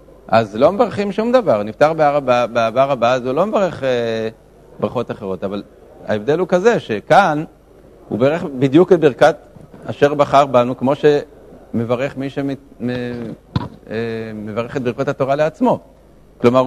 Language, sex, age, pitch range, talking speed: Hebrew, male, 50-69, 115-150 Hz, 135 wpm